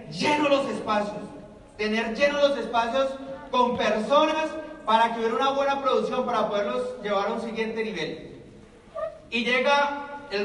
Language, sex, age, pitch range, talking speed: Spanish, male, 30-49, 210-255 Hz, 145 wpm